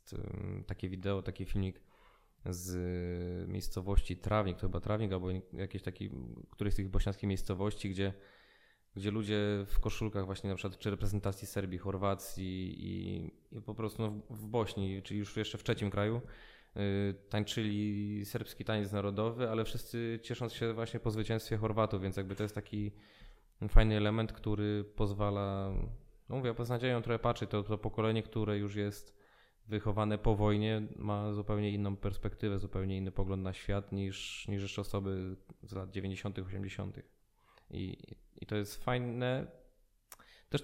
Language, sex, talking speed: Polish, male, 155 wpm